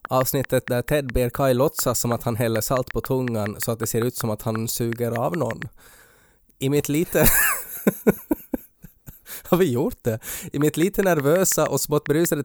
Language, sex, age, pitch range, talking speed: Swedish, male, 20-39, 120-145 Hz, 180 wpm